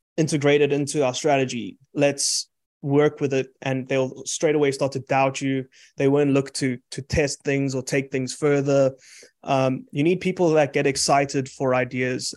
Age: 20-39